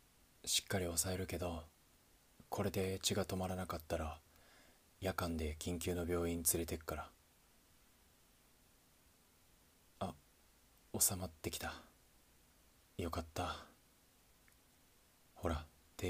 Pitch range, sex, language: 80-90 Hz, male, Japanese